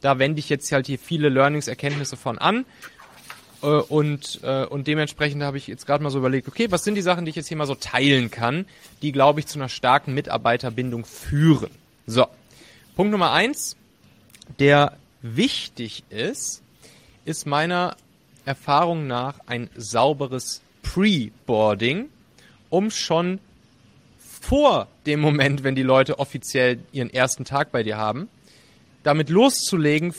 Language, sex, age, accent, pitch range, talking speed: German, male, 30-49, German, 125-155 Hz, 145 wpm